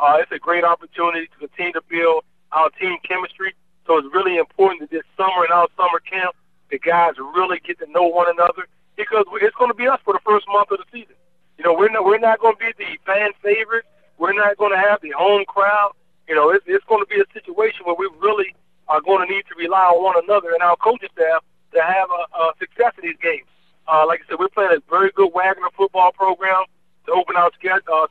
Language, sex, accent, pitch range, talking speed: English, male, American, 175-205 Hz, 240 wpm